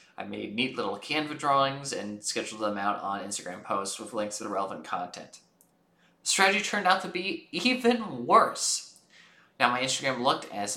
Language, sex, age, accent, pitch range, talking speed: English, male, 20-39, American, 110-165 Hz, 180 wpm